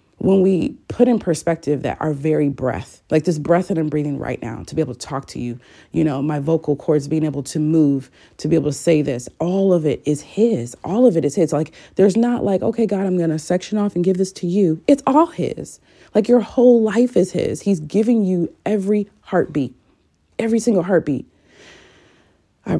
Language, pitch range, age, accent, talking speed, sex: English, 140-185 Hz, 30-49, American, 220 wpm, female